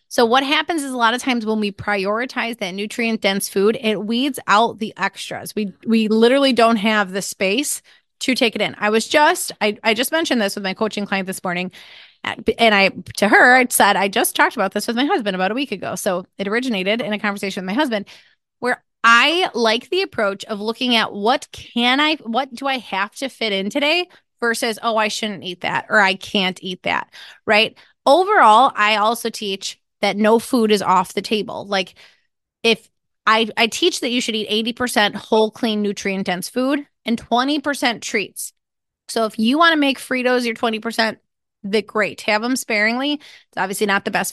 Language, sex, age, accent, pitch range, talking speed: English, female, 20-39, American, 205-255 Hz, 205 wpm